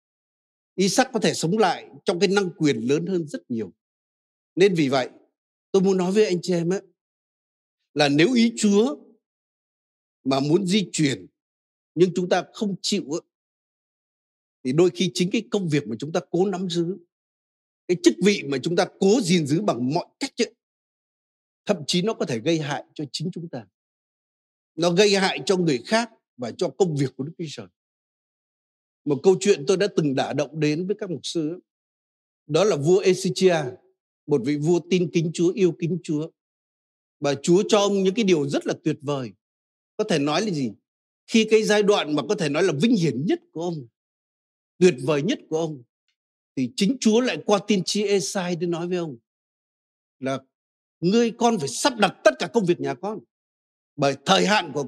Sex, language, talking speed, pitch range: male, Vietnamese, 195 wpm, 150-205 Hz